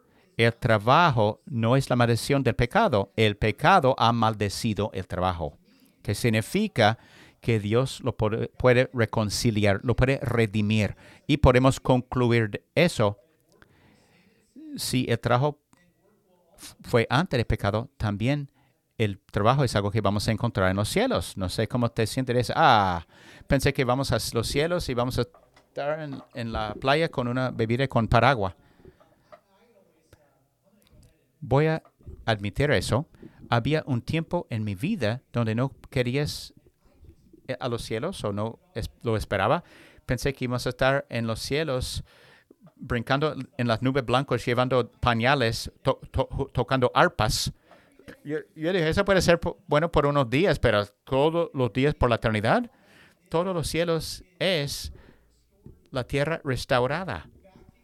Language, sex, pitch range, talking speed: English, male, 110-145 Hz, 145 wpm